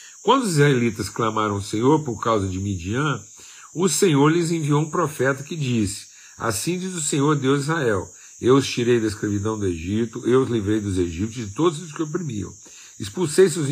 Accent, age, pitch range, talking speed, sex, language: Brazilian, 50-69, 110-150 Hz, 195 wpm, male, Portuguese